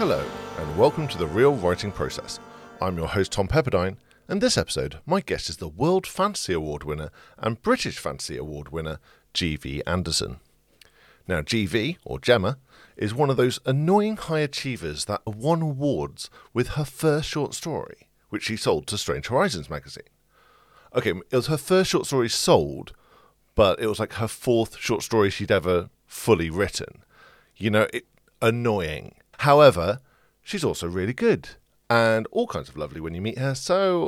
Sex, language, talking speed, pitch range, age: male, English, 165 wpm, 95-145 Hz, 50-69